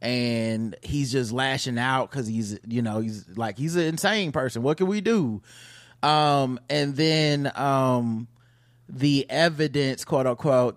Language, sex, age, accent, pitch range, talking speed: English, male, 20-39, American, 120-160 Hz, 150 wpm